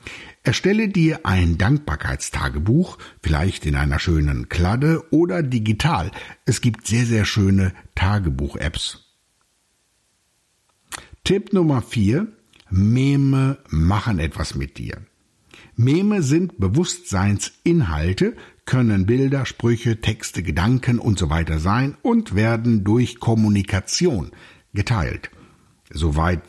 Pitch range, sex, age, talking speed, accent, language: 90-135 Hz, male, 60-79, 95 wpm, German, German